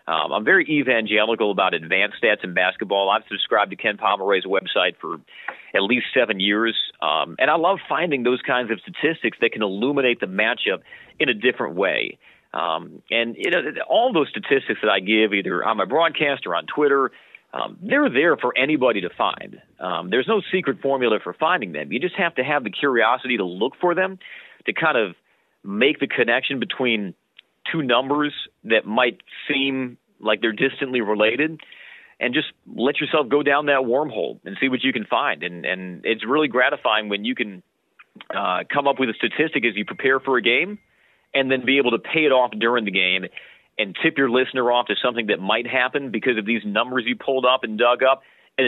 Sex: male